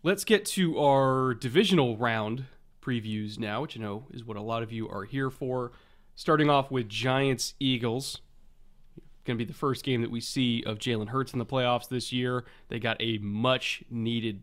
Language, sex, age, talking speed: English, male, 20-39, 185 wpm